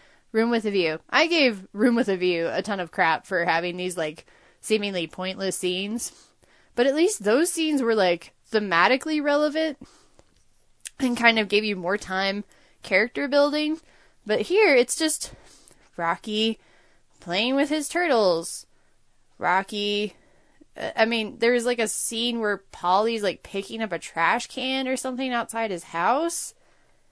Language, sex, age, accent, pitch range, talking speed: English, female, 10-29, American, 185-260 Hz, 150 wpm